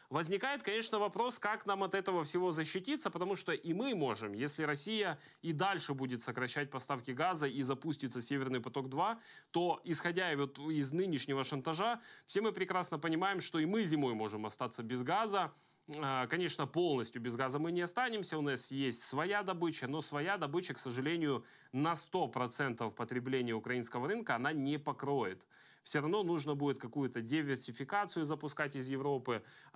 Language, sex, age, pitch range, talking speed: Russian, male, 20-39, 130-170 Hz, 155 wpm